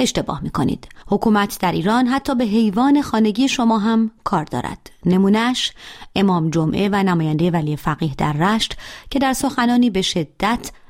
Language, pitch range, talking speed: Persian, 160-220 Hz, 160 wpm